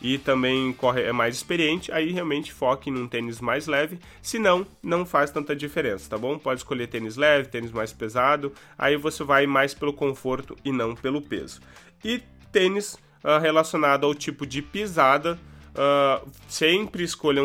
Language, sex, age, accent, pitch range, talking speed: Portuguese, male, 20-39, Brazilian, 130-155 Hz, 165 wpm